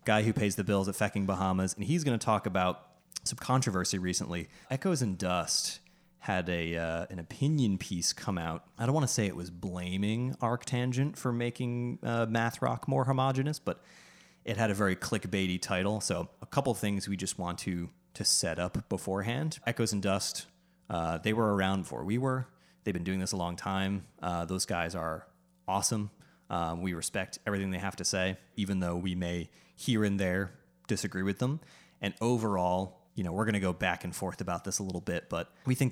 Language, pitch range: English, 90-115 Hz